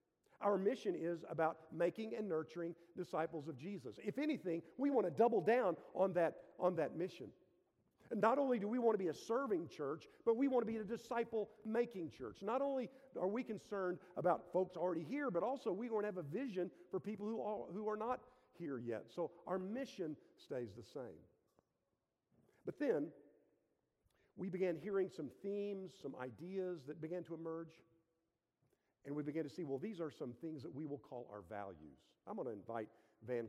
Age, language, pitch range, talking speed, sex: 50-69, English, 150-200 Hz, 185 wpm, male